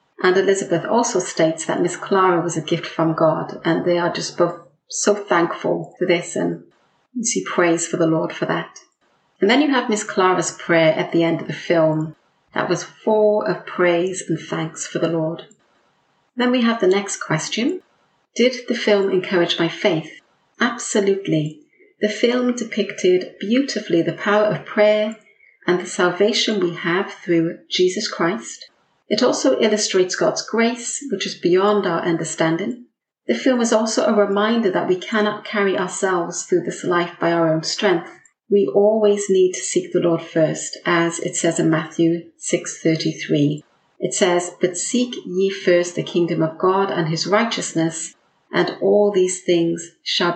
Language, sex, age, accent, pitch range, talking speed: English, female, 40-59, British, 170-210 Hz, 170 wpm